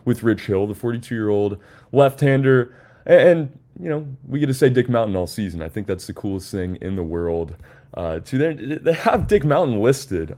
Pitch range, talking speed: 105-145 Hz, 195 wpm